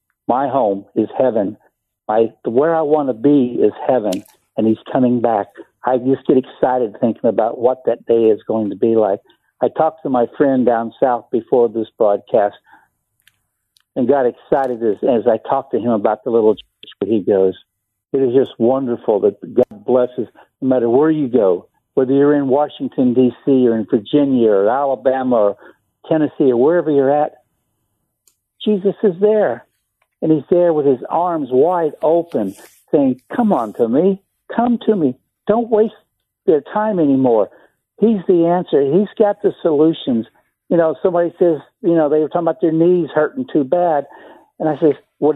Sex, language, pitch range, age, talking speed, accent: male, English, 125-175 Hz, 60-79, 175 wpm, American